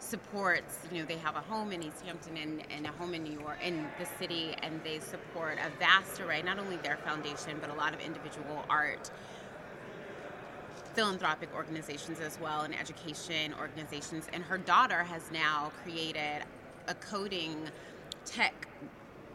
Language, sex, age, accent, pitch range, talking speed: English, female, 20-39, American, 150-190 Hz, 160 wpm